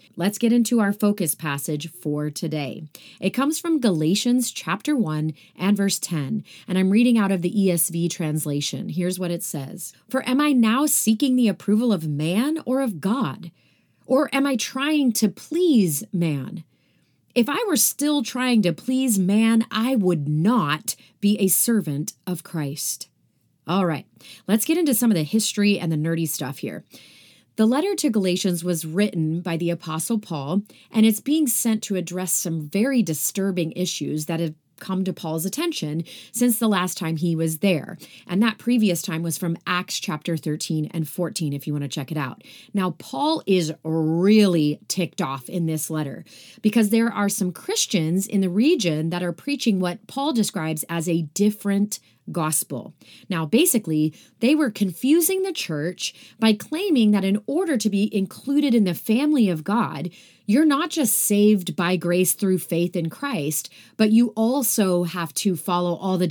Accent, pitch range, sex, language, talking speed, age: American, 165-230 Hz, female, English, 175 wpm, 30-49